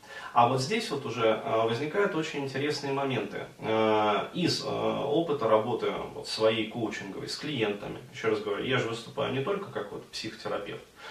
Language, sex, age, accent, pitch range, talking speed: Russian, male, 30-49, native, 110-145 Hz, 150 wpm